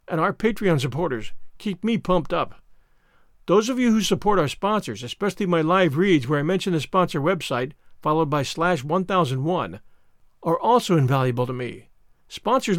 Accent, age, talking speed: American, 50-69, 165 wpm